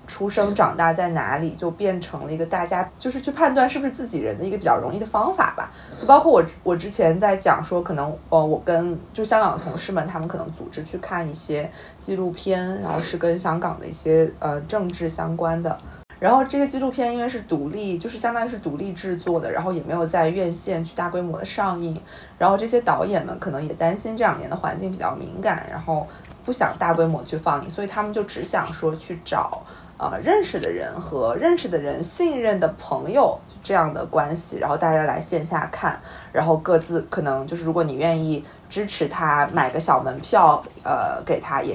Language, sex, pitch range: Chinese, female, 165-205 Hz